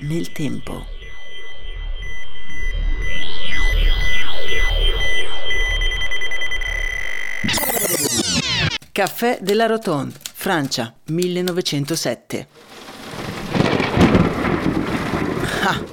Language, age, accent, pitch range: Italian, 40-59, native, 155-230 Hz